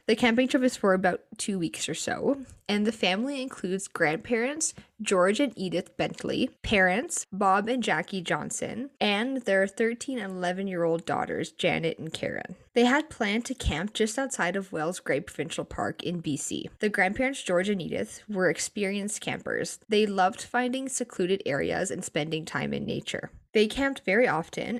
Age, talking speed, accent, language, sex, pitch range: 10-29, 165 wpm, American, English, female, 175-235 Hz